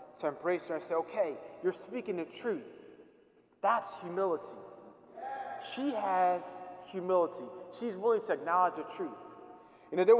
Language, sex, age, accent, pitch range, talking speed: English, male, 20-39, American, 160-225 Hz, 140 wpm